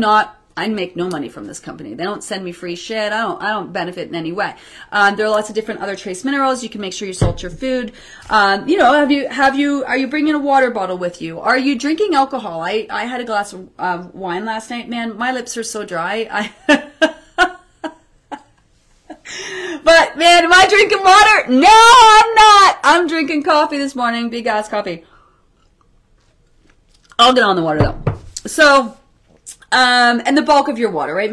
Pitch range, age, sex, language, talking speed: 195-275 Hz, 30-49, female, English, 205 wpm